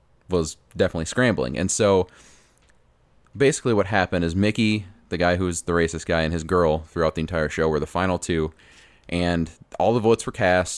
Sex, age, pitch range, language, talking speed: male, 30-49, 80-95 Hz, English, 185 wpm